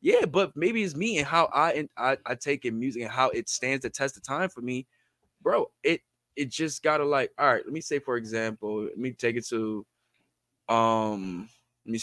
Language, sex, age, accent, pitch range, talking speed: English, male, 20-39, American, 110-150 Hz, 235 wpm